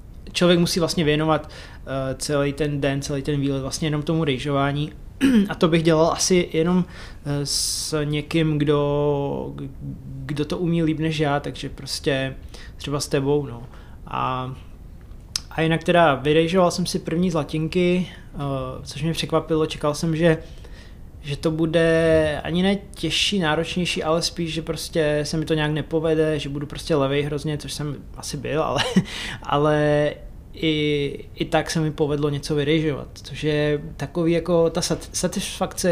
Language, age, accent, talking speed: Czech, 20-39, native, 150 wpm